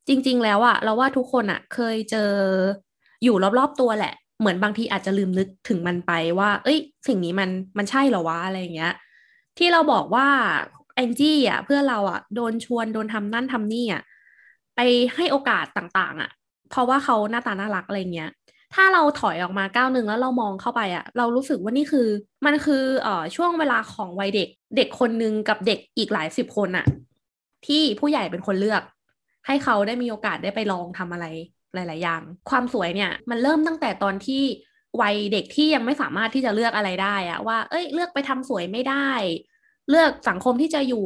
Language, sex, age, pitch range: Thai, female, 20-39, 200-270 Hz